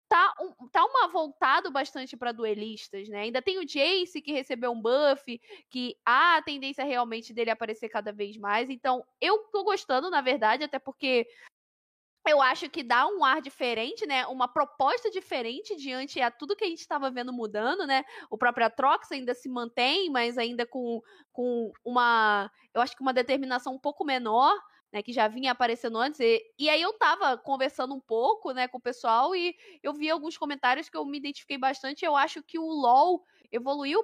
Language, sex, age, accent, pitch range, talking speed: Portuguese, female, 10-29, Brazilian, 245-330 Hz, 195 wpm